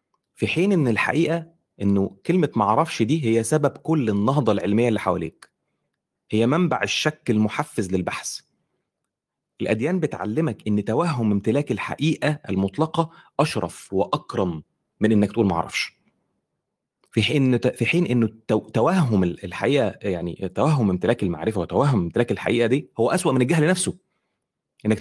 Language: Arabic